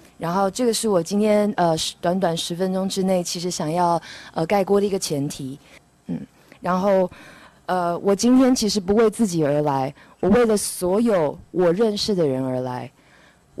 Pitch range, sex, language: 170-215 Hz, female, Chinese